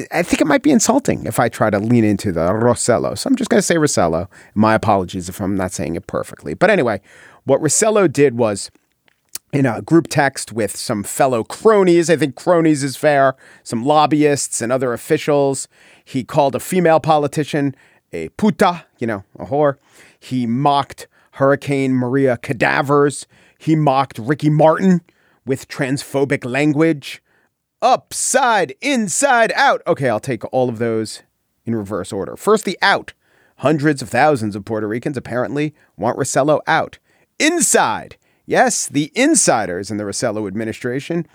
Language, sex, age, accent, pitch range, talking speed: English, male, 40-59, American, 120-160 Hz, 160 wpm